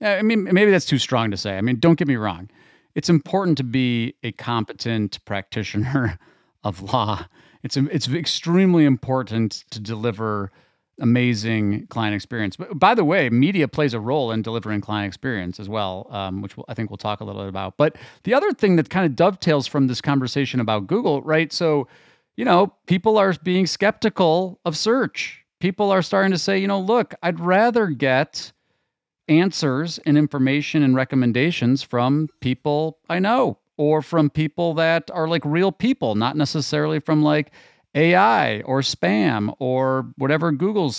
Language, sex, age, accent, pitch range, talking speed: English, male, 40-59, American, 110-160 Hz, 175 wpm